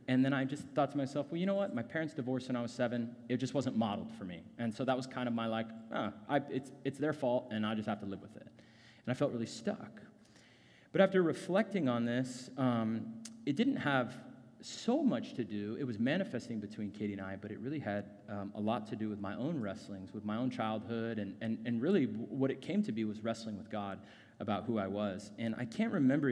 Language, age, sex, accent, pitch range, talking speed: English, 30-49, male, American, 105-135 Hz, 250 wpm